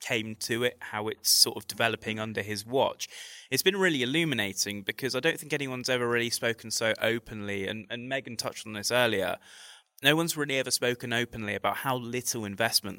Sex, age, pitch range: male, 20-39, 100-120 Hz